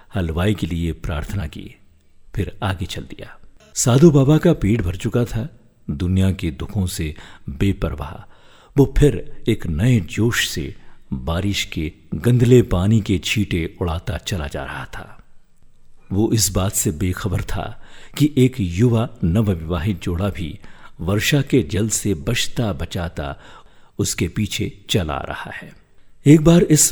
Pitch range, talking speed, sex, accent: 90-120 Hz, 145 wpm, male, native